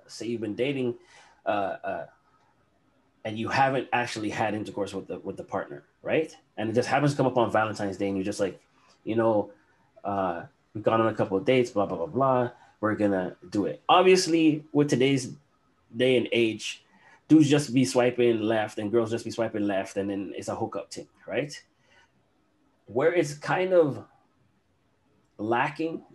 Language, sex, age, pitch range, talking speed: English, male, 20-39, 105-130 Hz, 180 wpm